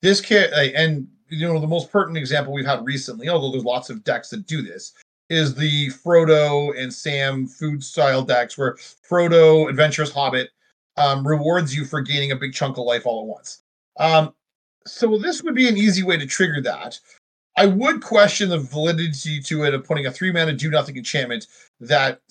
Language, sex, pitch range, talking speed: English, male, 140-185 Hz, 195 wpm